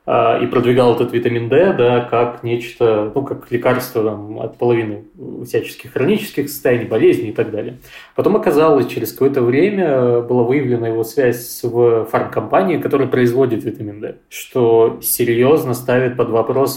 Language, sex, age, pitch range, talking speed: Russian, male, 20-39, 115-125 Hz, 145 wpm